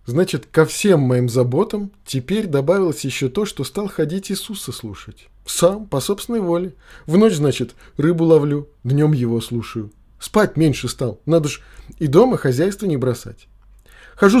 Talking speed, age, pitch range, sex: 155 wpm, 20-39, 120-180 Hz, male